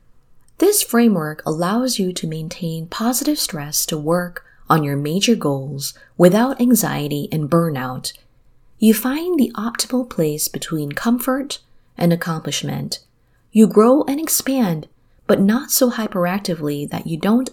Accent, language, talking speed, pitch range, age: American, English, 130 wpm, 145-235 Hz, 30-49